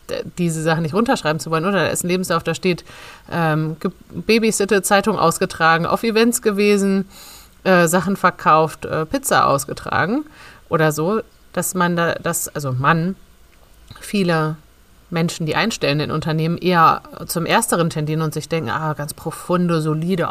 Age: 30-49